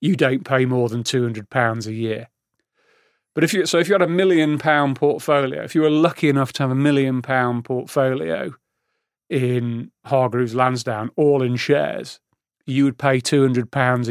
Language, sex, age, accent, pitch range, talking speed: English, male, 30-49, British, 130-155 Hz, 170 wpm